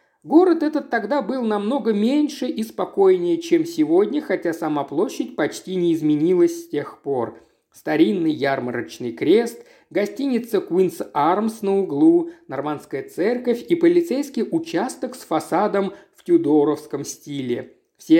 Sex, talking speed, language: male, 125 wpm, Russian